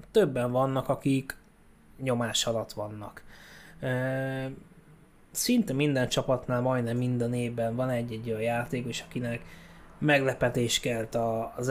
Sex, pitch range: male, 120-145 Hz